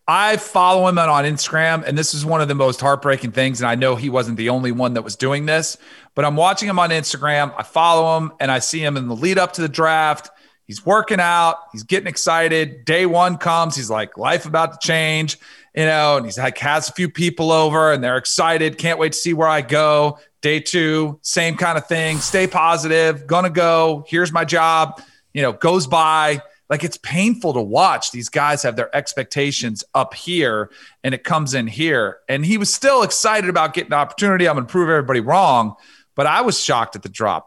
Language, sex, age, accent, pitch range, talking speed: English, male, 40-59, American, 145-175 Hz, 220 wpm